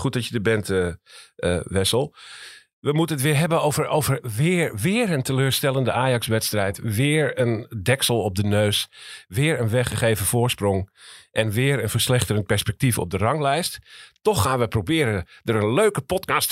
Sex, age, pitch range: male, 50-69, 105-140 Hz